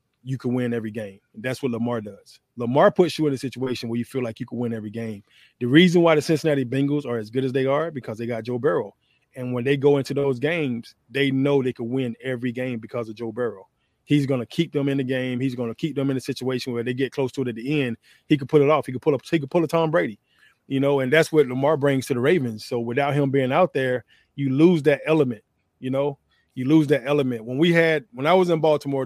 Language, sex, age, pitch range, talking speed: English, male, 20-39, 125-155 Hz, 275 wpm